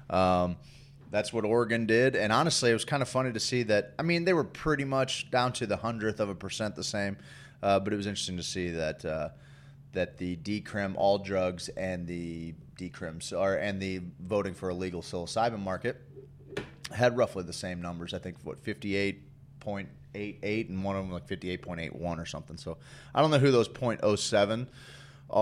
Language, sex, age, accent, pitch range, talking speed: English, male, 30-49, American, 95-135 Hz, 185 wpm